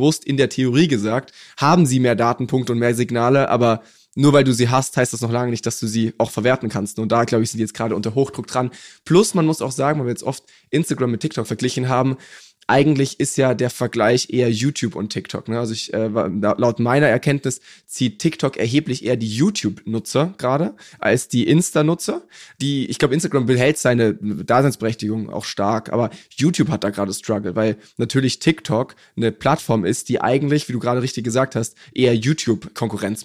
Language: German